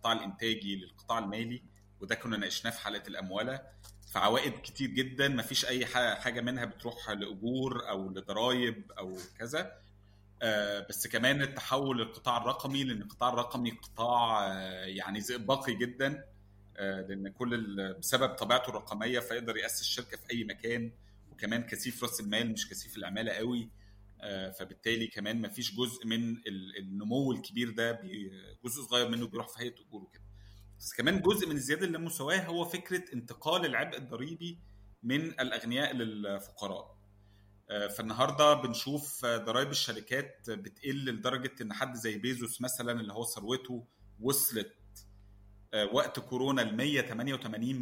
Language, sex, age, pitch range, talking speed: Arabic, male, 30-49, 100-125 Hz, 130 wpm